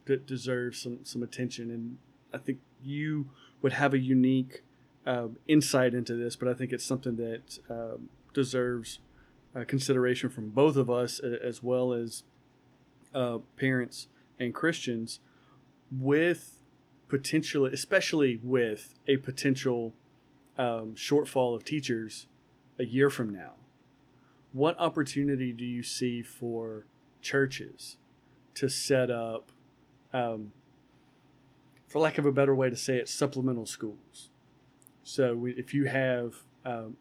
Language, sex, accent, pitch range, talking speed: English, male, American, 125-140 Hz, 130 wpm